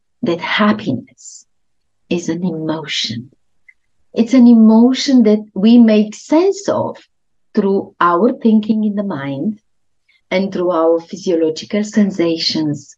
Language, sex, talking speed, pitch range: English, female, 110 wpm, 170-245 Hz